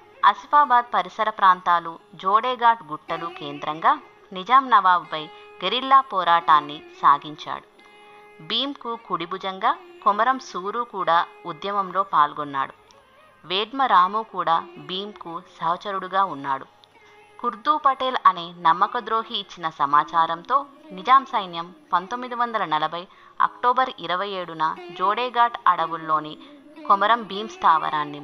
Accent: native